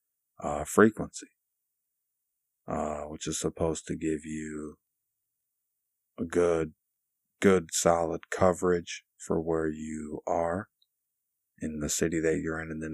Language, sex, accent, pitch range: English, male, American, 80-85 Hz